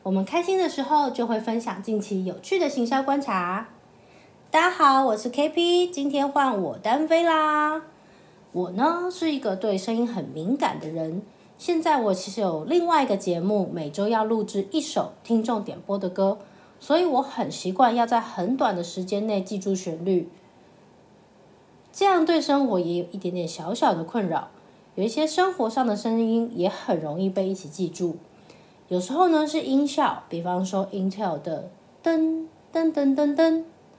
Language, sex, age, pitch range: Chinese, female, 30-49, 195-300 Hz